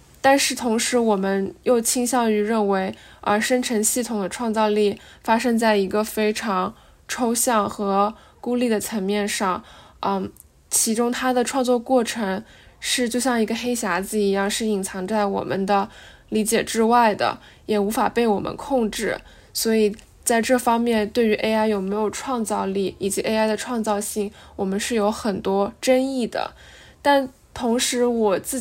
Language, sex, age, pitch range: Chinese, female, 10-29, 205-245 Hz